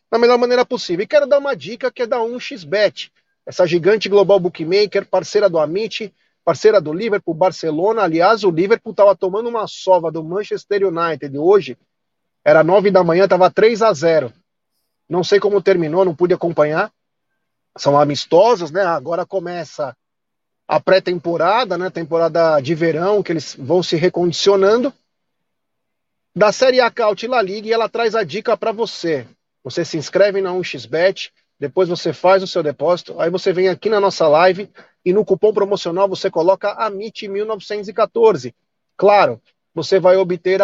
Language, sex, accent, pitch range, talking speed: Portuguese, male, Brazilian, 175-220 Hz, 155 wpm